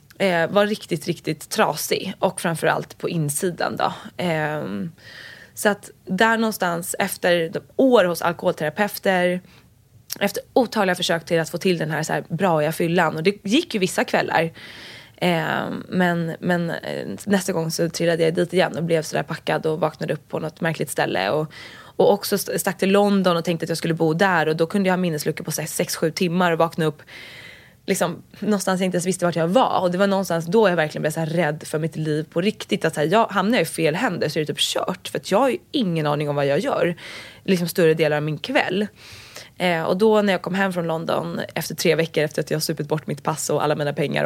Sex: female